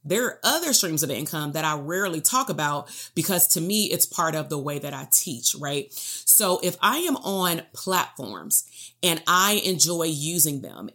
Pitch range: 150-175 Hz